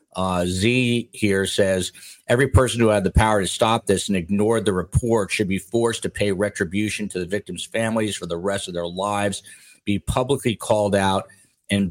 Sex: male